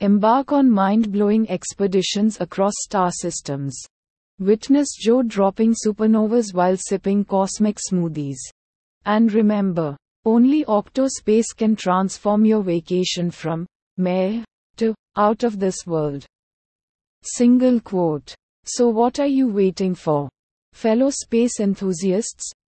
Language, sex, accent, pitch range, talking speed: English, female, Indian, 175-220 Hz, 110 wpm